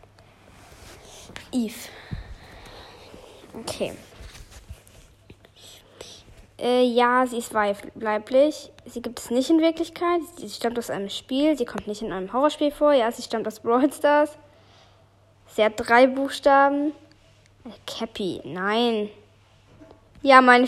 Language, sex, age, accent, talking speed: German, female, 10-29, German, 115 wpm